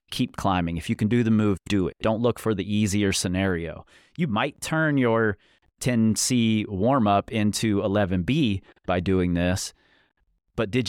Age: 30-49